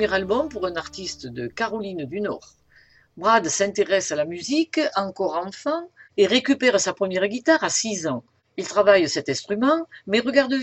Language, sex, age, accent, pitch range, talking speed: French, female, 50-69, French, 175-255 Hz, 165 wpm